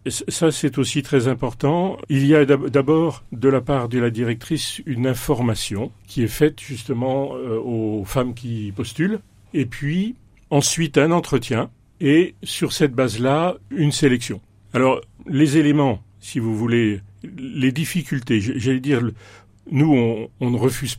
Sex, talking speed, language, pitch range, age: male, 150 wpm, French, 110-135 Hz, 40-59